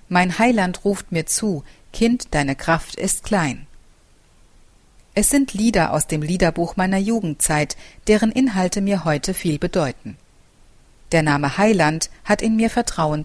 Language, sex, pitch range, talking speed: German, female, 150-205 Hz, 140 wpm